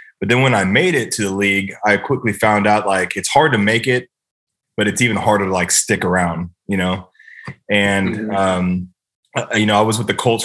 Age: 20-39